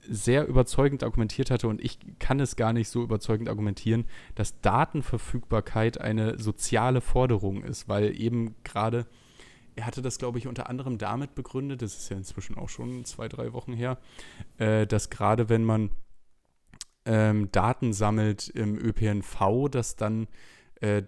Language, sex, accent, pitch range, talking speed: German, male, German, 105-120 Hz, 155 wpm